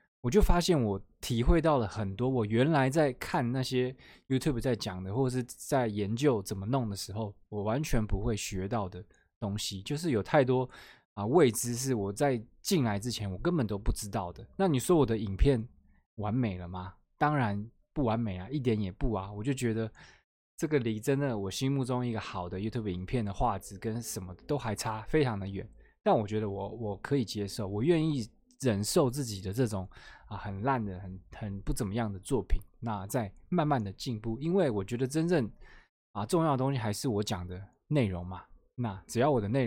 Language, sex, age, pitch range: Chinese, male, 20-39, 100-130 Hz